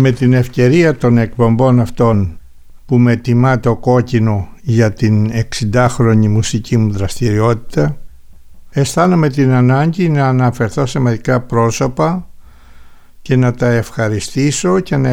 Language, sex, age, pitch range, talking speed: Greek, male, 60-79, 110-140 Hz, 120 wpm